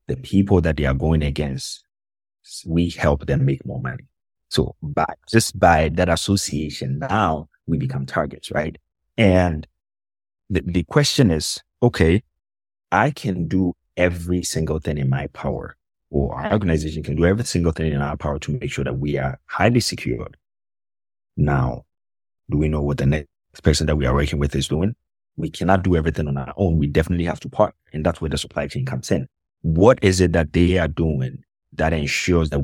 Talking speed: 190 wpm